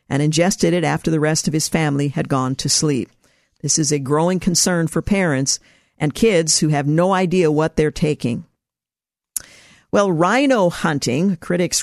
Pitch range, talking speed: 155-195 Hz, 165 wpm